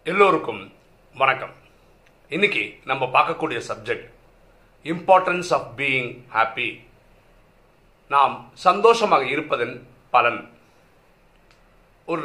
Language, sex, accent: Tamil, male, native